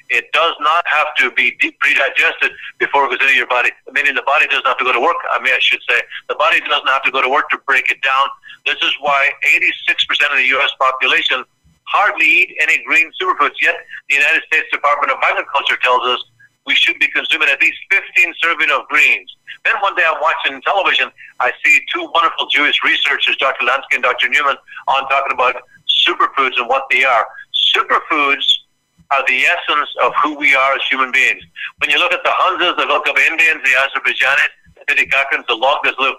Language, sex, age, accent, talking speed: English, male, 50-69, American, 205 wpm